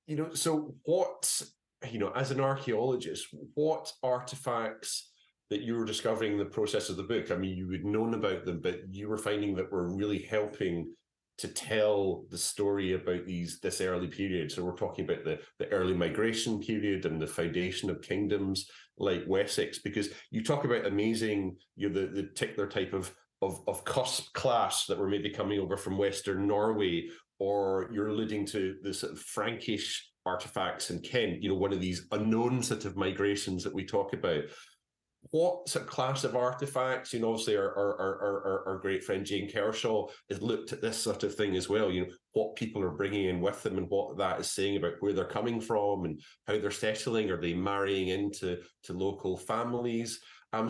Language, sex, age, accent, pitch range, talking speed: English, male, 30-49, British, 95-115 Hz, 200 wpm